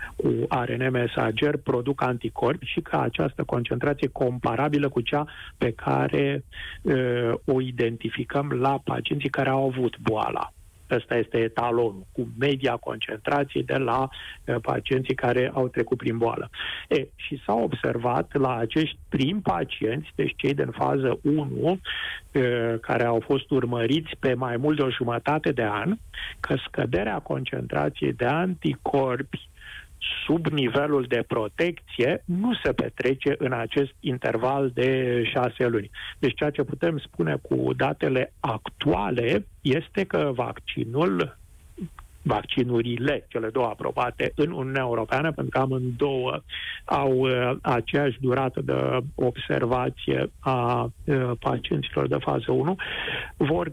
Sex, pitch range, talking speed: male, 120-145 Hz, 125 wpm